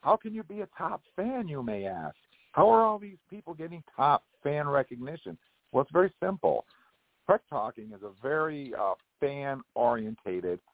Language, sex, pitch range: English, male, 105-145 Hz